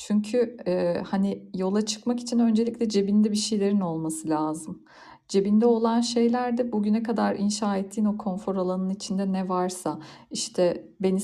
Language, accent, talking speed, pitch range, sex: Turkish, native, 145 wpm, 175-210 Hz, female